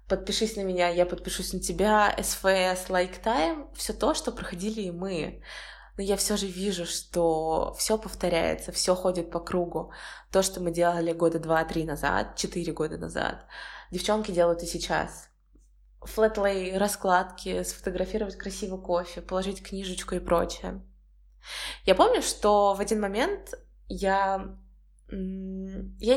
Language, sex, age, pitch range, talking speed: Russian, female, 20-39, 170-205 Hz, 135 wpm